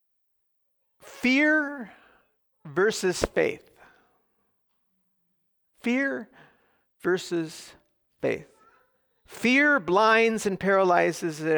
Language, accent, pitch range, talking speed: English, American, 140-220 Hz, 55 wpm